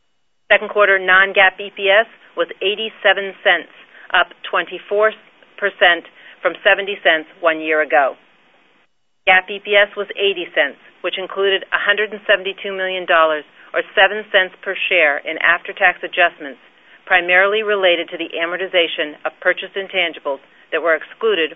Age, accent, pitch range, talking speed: 40-59, American, 175-210 Hz, 140 wpm